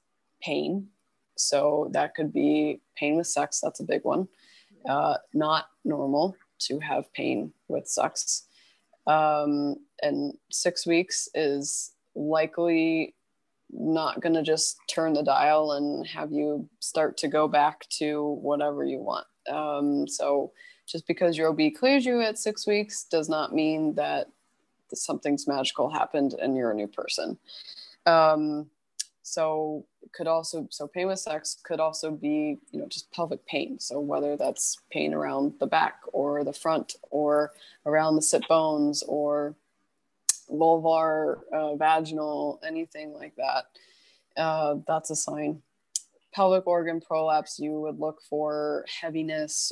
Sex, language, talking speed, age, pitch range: female, English, 140 wpm, 20-39, 150-165 Hz